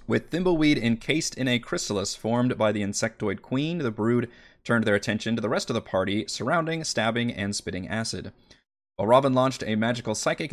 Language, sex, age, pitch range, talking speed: English, male, 30-49, 105-140 Hz, 180 wpm